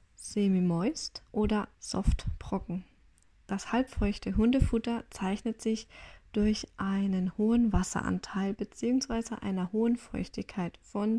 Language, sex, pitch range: German, female, 185-235 Hz